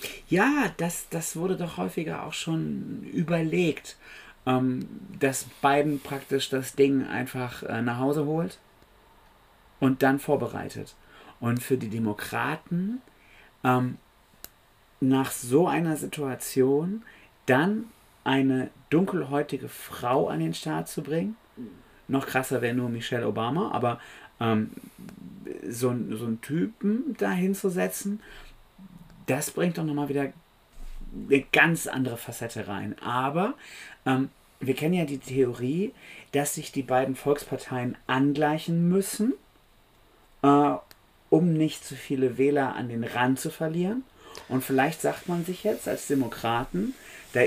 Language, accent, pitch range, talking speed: German, German, 125-165 Hz, 125 wpm